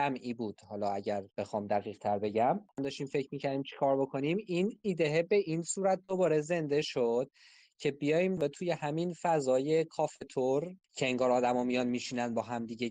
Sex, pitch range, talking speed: male, 125-165 Hz, 165 wpm